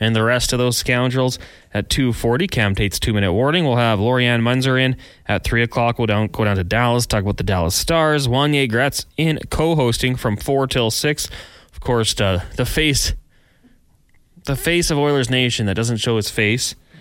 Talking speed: 190 wpm